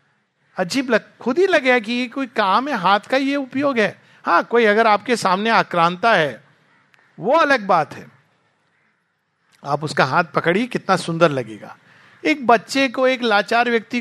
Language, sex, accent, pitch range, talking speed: Hindi, male, native, 160-225 Hz, 165 wpm